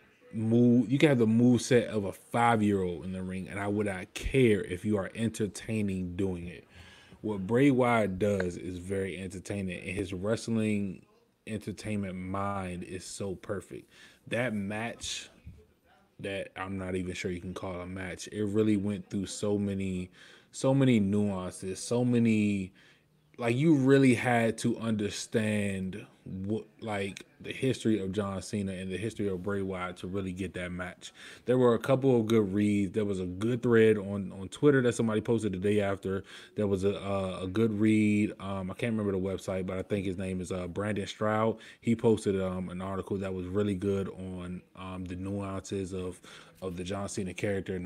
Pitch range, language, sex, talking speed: 95-110 Hz, English, male, 190 wpm